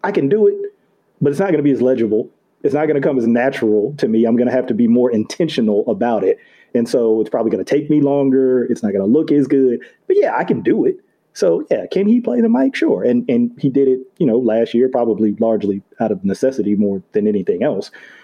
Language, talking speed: English, 260 wpm